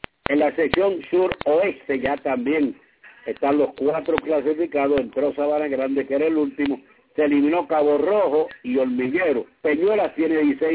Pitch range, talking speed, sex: 140-165 Hz, 145 wpm, male